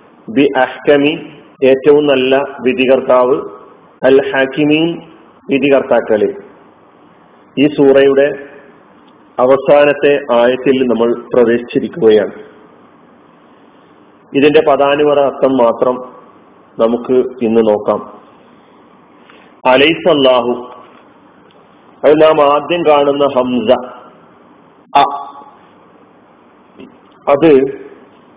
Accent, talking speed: native, 55 wpm